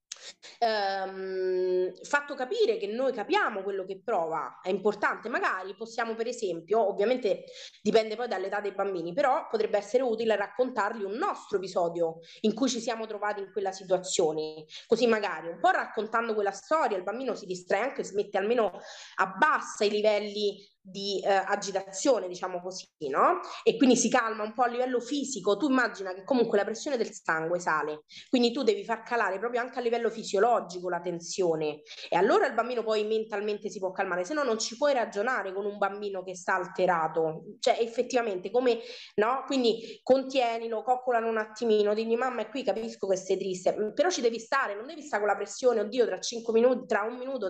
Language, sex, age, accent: Italian, female, 20-39, native